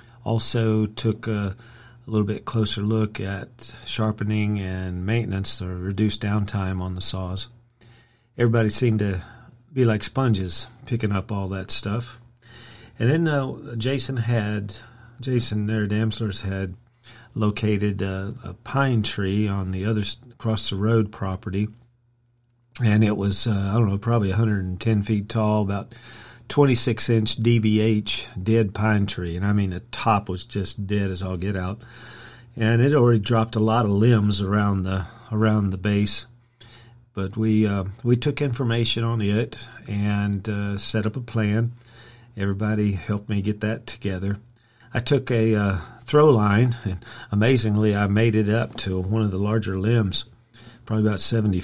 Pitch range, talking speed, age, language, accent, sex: 100-120 Hz, 155 wpm, 40-59, English, American, male